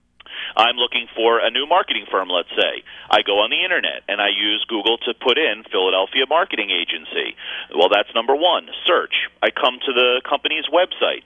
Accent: American